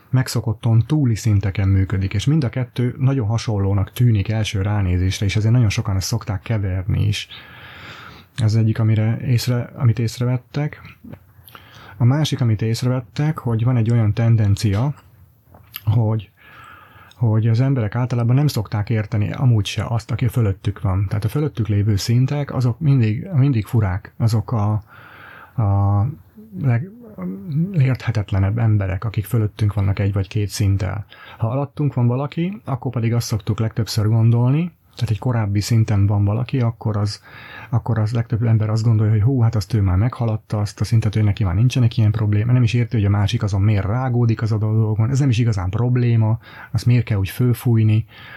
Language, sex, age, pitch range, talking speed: Hungarian, male, 30-49, 105-120 Hz, 165 wpm